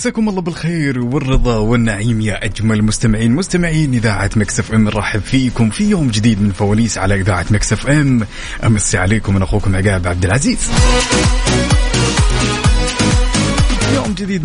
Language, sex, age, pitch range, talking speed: Arabic, male, 30-49, 100-130 Hz, 130 wpm